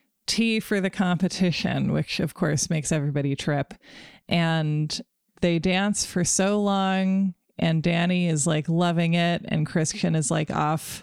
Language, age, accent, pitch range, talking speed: English, 20-39, American, 155-190 Hz, 145 wpm